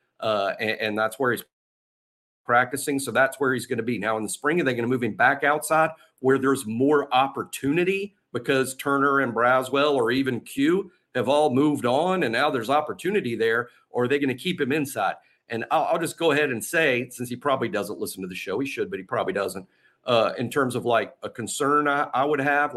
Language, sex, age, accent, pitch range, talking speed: English, male, 50-69, American, 125-155 Hz, 230 wpm